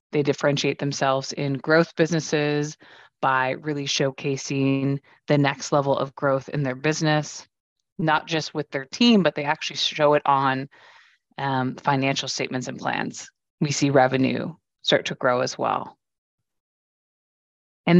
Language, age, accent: English, 30-49, American